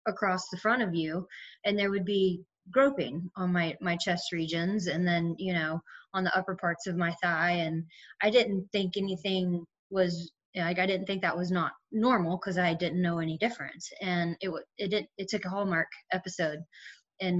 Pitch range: 170-190 Hz